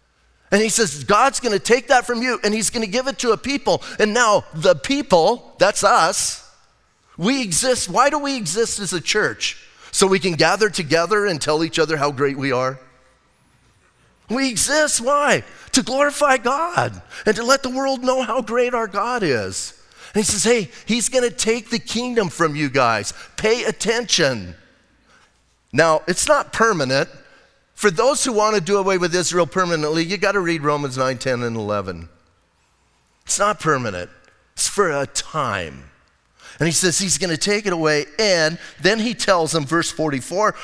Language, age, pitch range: English, 30-49, 145-225 Hz